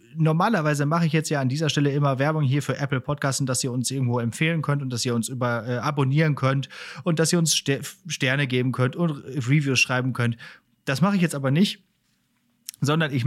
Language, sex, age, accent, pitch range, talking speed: German, male, 30-49, German, 130-165 Hz, 215 wpm